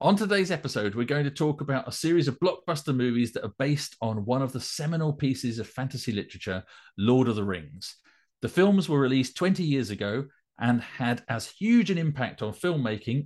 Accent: British